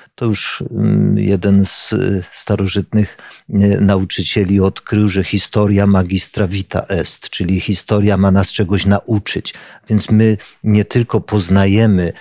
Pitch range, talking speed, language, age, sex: 100-120 Hz, 115 wpm, Polish, 50-69, male